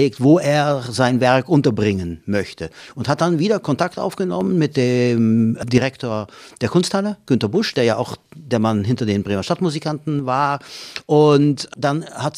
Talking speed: 155 wpm